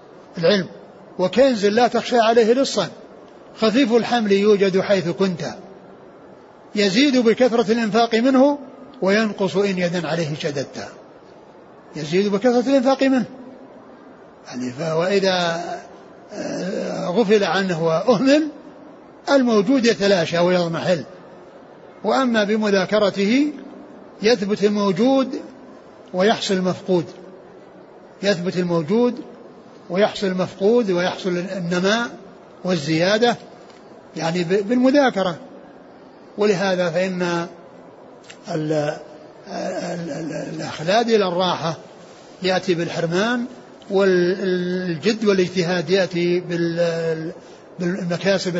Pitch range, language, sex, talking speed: 180-235 Hz, Arabic, male, 70 wpm